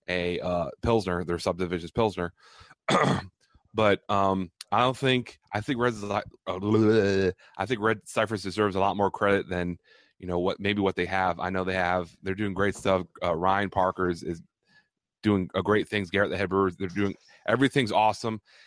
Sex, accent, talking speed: male, American, 185 wpm